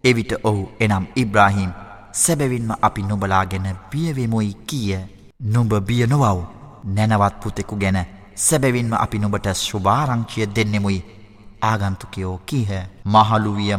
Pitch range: 100-120 Hz